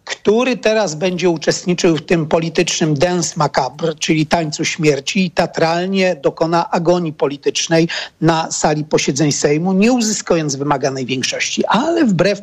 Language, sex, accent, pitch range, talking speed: Polish, male, native, 155-195 Hz, 130 wpm